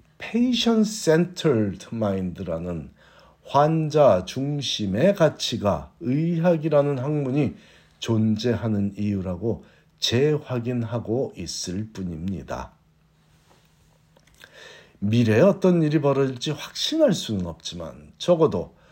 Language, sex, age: Korean, male, 50-69